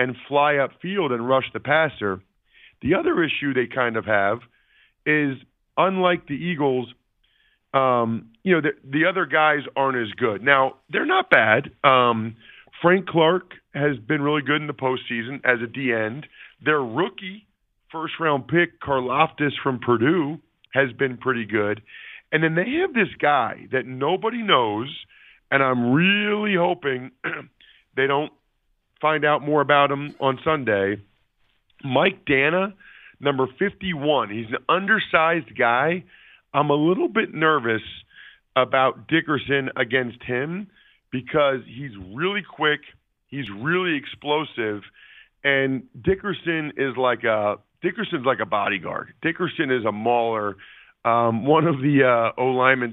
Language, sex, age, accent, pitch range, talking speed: English, male, 40-59, American, 120-160 Hz, 140 wpm